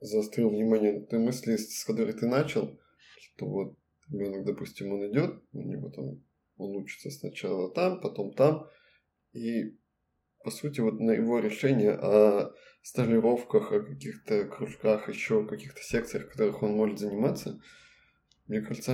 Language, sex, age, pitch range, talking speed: Russian, male, 20-39, 105-120 Hz, 145 wpm